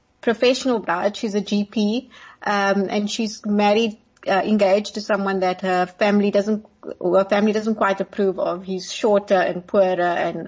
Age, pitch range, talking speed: 30-49, 185-215 Hz, 160 wpm